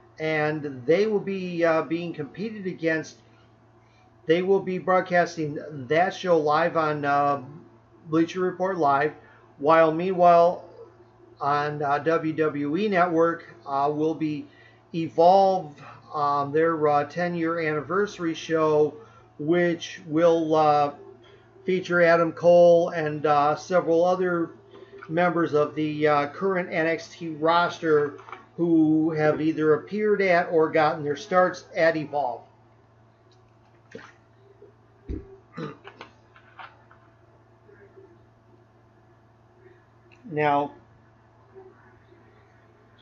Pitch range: 115-165 Hz